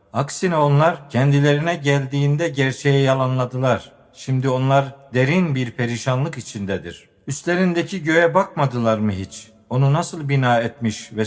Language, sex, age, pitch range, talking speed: Turkish, male, 50-69, 120-145 Hz, 115 wpm